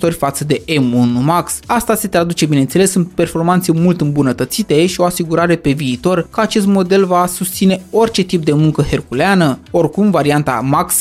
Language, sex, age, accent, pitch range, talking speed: Romanian, male, 20-39, native, 145-190 Hz, 165 wpm